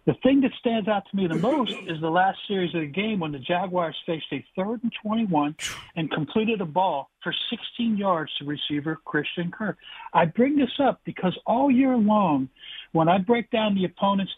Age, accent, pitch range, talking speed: 60-79, American, 160-215 Hz, 205 wpm